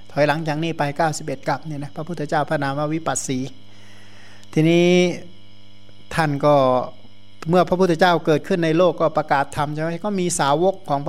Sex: male